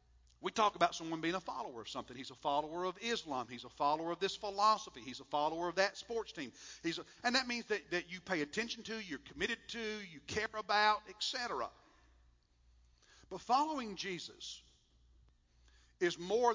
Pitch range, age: 135-210 Hz, 50-69